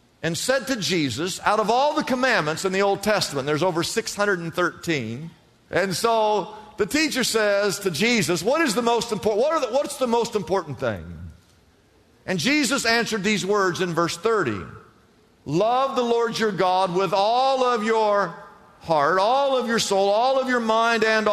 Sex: male